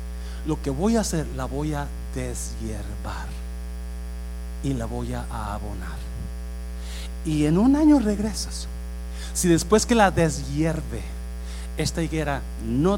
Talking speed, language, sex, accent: 125 wpm, Spanish, male, Mexican